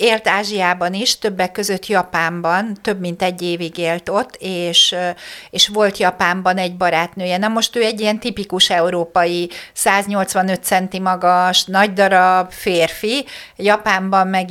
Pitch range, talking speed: 180-220 Hz, 135 wpm